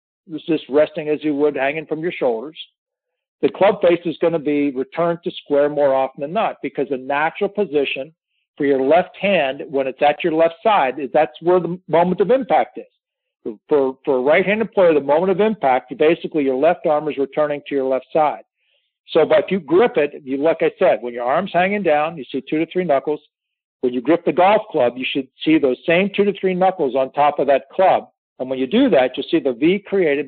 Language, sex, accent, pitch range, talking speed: English, male, American, 140-185 Hz, 230 wpm